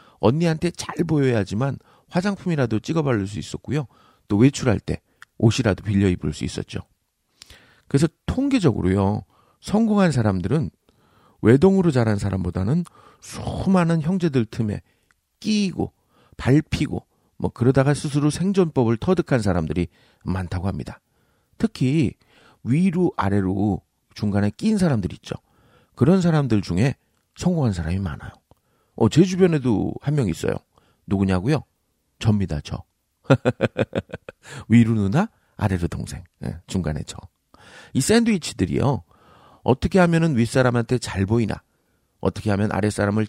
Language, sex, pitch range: Korean, male, 95-150 Hz